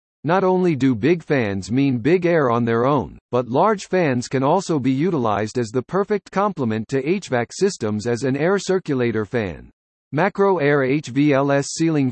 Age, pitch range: 50-69, 120-180 Hz